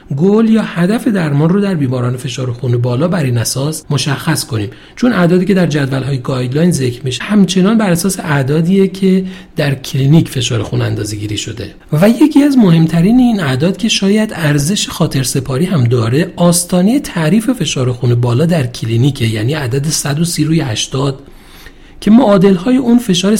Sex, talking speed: male, 165 wpm